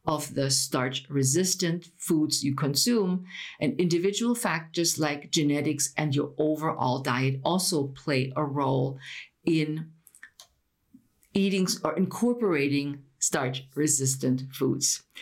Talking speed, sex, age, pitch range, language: 105 wpm, female, 50-69, 140-195 Hz, English